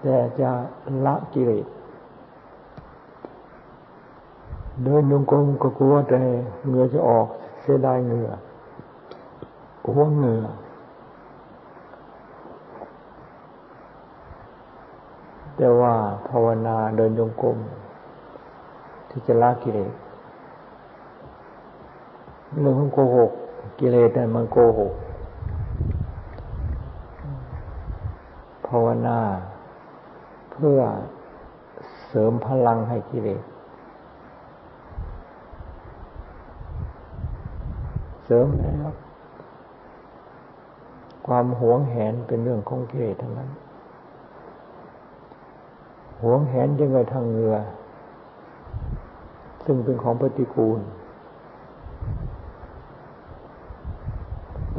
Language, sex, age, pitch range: Thai, male, 50-69, 100-130 Hz